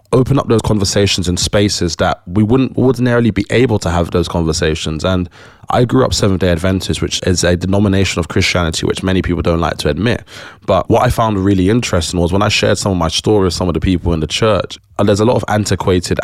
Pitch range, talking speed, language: 85-105 Hz, 230 wpm, English